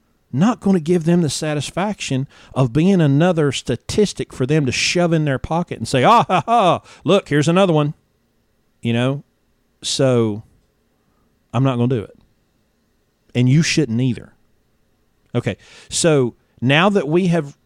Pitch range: 110-140 Hz